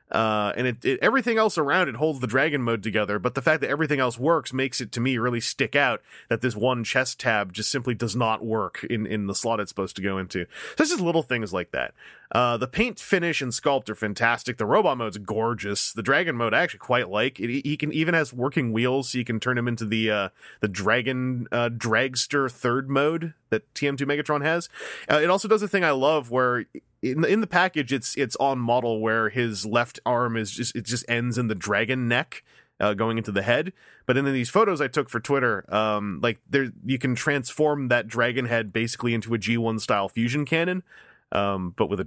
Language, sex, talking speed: English, male, 230 wpm